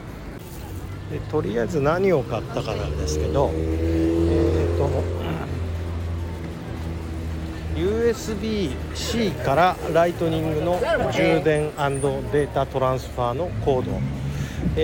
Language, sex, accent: Japanese, male, native